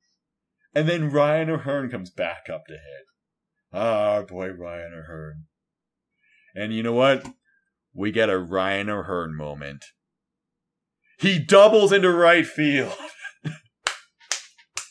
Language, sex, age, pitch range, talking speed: English, male, 40-59, 105-165 Hz, 115 wpm